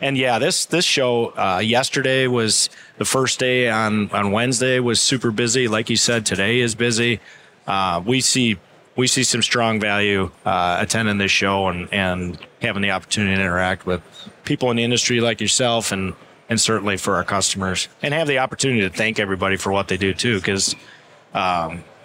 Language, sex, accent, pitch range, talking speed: English, male, American, 95-120 Hz, 190 wpm